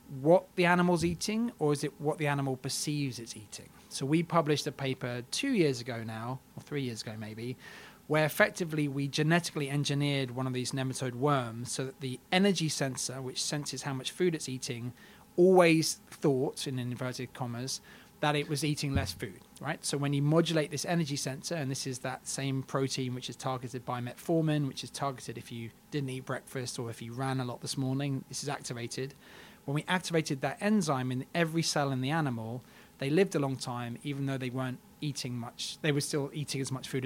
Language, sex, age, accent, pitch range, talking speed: English, male, 20-39, British, 130-155 Hz, 205 wpm